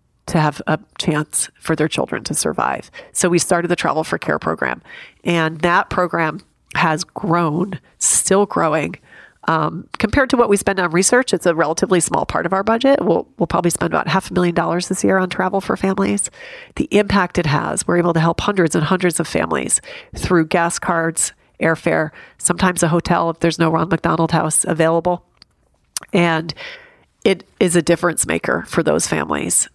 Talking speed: 185 wpm